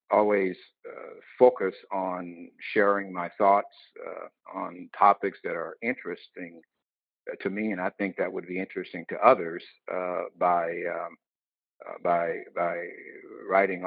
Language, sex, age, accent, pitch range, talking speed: English, male, 60-79, American, 95-120 Hz, 130 wpm